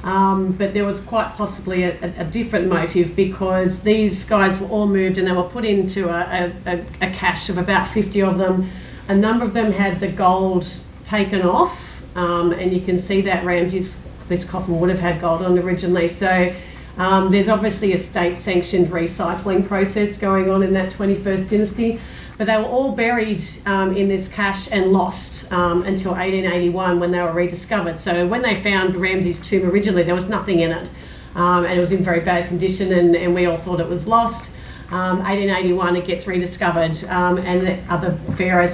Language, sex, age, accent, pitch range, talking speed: English, female, 40-59, Australian, 175-195 Hz, 195 wpm